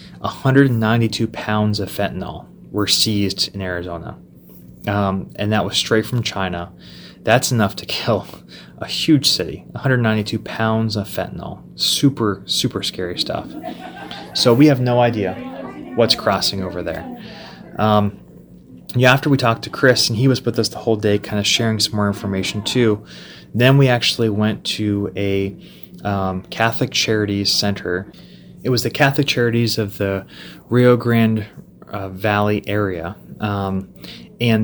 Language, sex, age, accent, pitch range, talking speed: English, male, 20-39, American, 95-115 Hz, 145 wpm